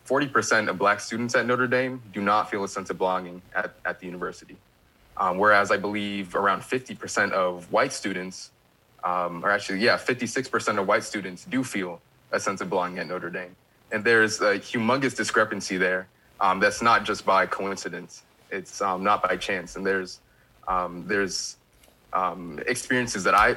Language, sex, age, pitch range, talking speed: English, male, 30-49, 90-105 Hz, 175 wpm